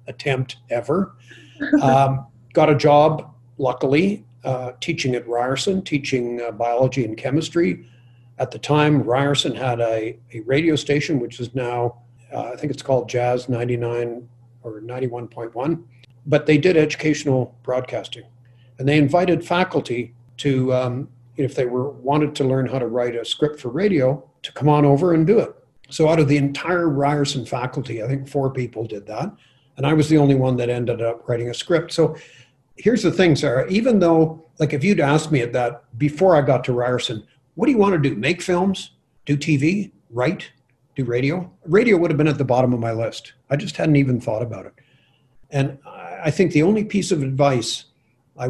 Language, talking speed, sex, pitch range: English, 190 wpm, male, 125-155 Hz